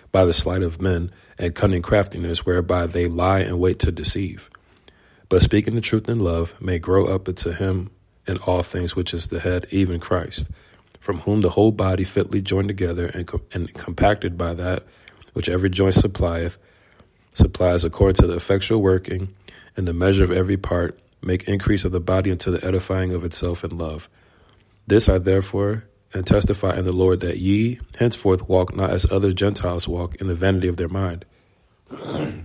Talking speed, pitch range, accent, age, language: 180 wpm, 90-95 Hz, American, 40-59, English